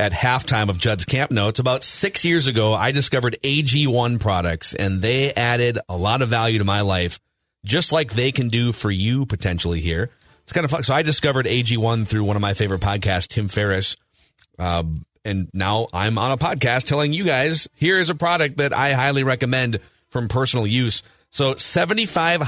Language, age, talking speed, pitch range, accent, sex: English, 30-49, 190 wpm, 105-145 Hz, American, male